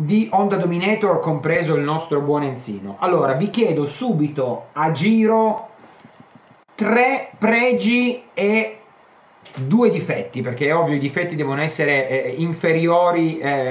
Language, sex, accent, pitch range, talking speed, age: Italian, male, native, 150-205 Hz, 125 wpm, 30-49